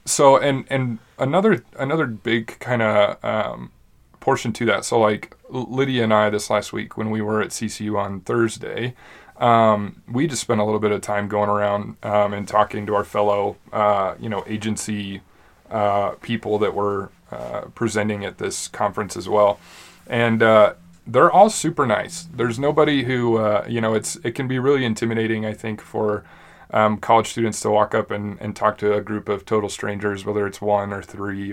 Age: 30-49